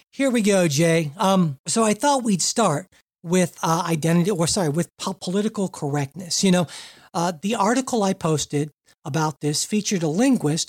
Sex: male